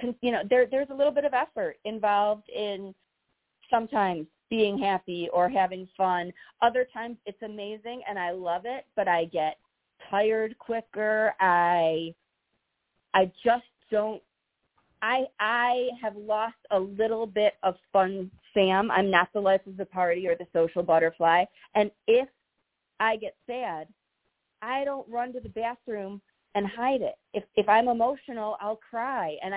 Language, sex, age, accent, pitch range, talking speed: English, female, 40-59, American, 190-240 Hz, 155 wpm